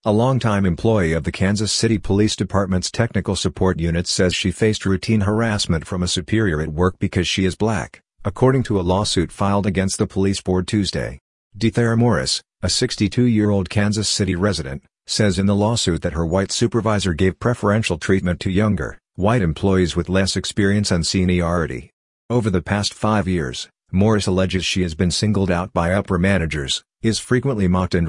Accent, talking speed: American, 175 wpm